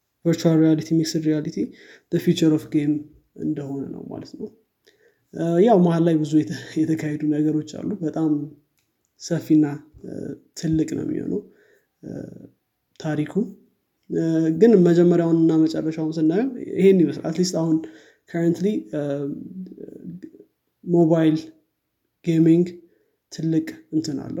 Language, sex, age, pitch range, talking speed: Amharic, male, 20-39, 150-175 Hz, 90 wpm